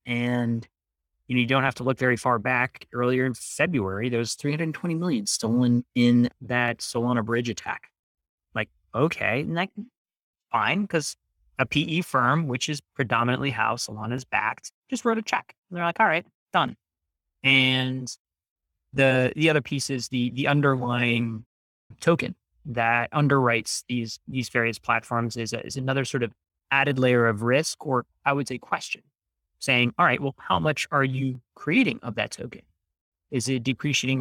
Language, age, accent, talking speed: English, 30-49, American, 165 wpm